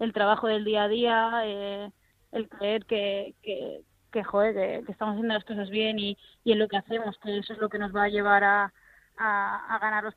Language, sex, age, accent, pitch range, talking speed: Spanish, female, 20-39, Spanish, 205-225 Hz, 230 wpm